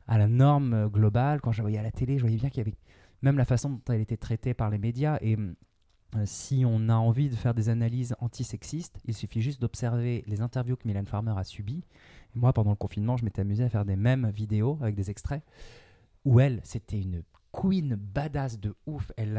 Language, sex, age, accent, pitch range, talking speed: French, male, 20-39, French, 105-130 Hz, 225 wpm